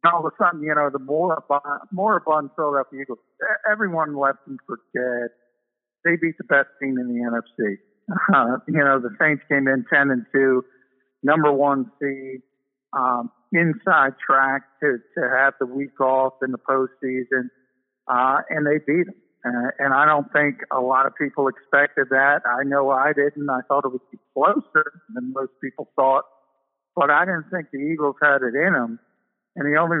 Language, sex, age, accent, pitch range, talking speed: English, male, 50-69, American, 130-150 Hz, 190 wpm